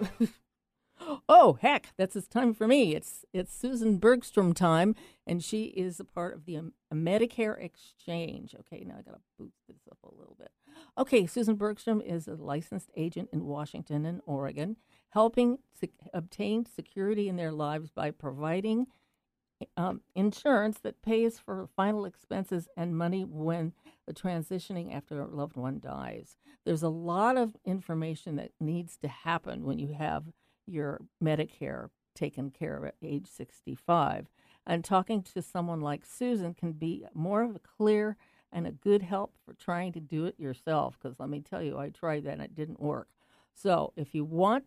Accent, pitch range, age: American, 155-210 Hz, 50-69